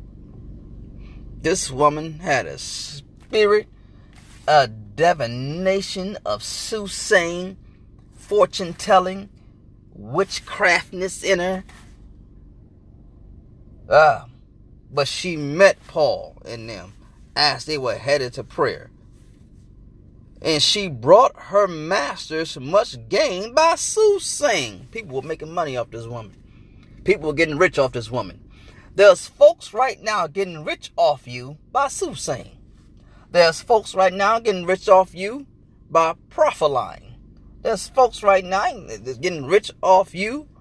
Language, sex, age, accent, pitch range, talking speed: English, male, 30-49, American, 125-195 Hz, 115 wpm